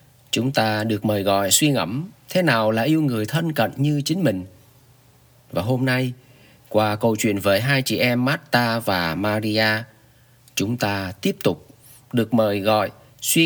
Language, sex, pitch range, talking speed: Vietnamese, male, 110-140 Hz, 170 wpm